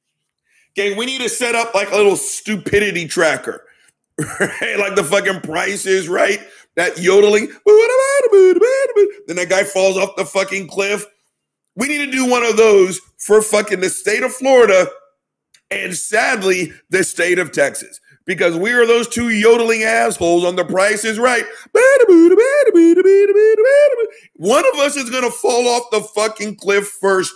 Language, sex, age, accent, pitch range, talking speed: English, male, 50-69, American, 195-260 Hz, 150 wpm